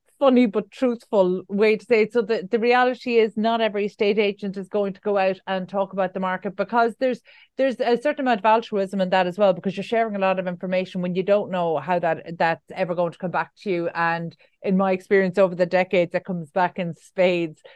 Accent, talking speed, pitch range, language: Irish, 240 wpm, 180-215 Hz, English